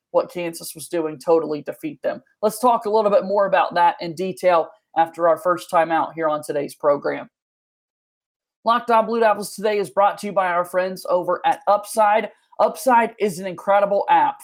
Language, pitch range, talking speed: English, 175-230 Hz, 185 wpm